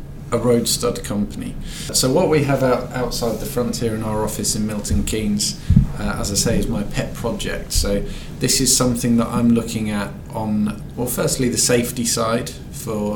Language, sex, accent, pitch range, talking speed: English, male, British, 110-125 Hz, 185 wpm